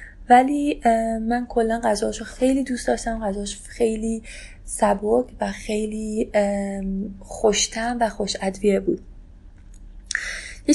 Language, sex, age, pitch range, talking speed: Persian, female, 20-39, 210-240 Hz, 100 wpm